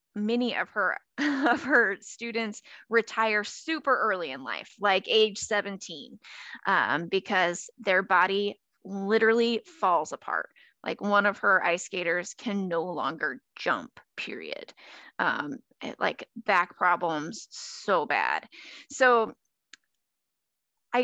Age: 20-39